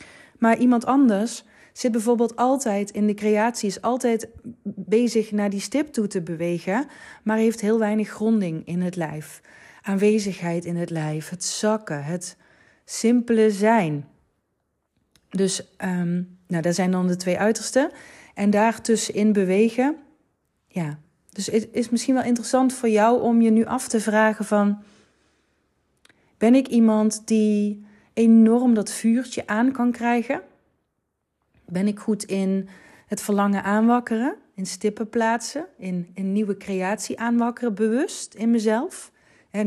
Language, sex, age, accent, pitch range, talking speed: Dutch, female, 30-49, Dutch, 185-235 Hz, 140 wpm